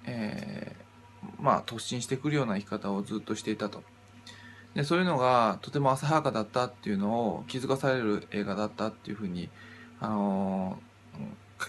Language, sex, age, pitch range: Japanese, male, 20-39, 105-135 Hz